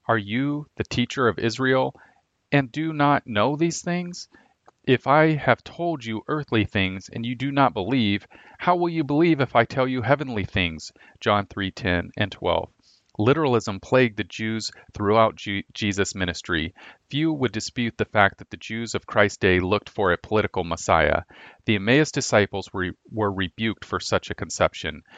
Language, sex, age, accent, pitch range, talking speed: English, male, 40-59, American, 100-130 Hz, 170 wpm